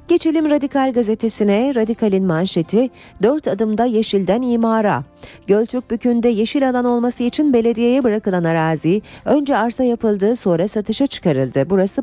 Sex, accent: female, native